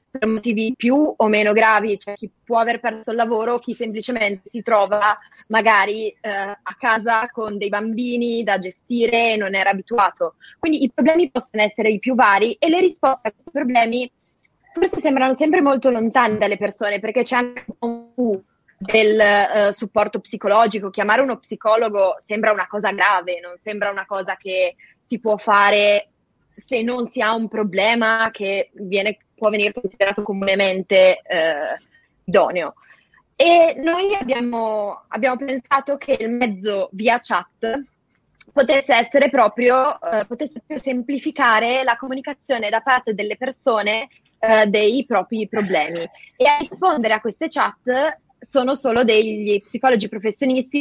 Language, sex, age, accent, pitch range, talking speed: Italian, female, 20-39, native, 205-250 Hz, 150 wpm